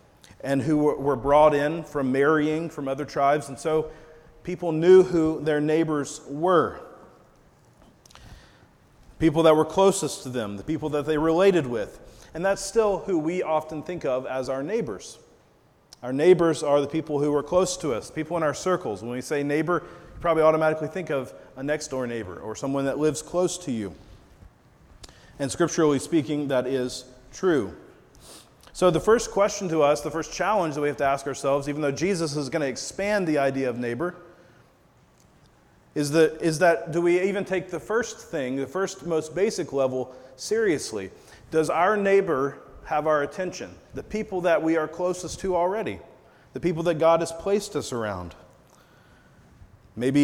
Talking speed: 175 wpm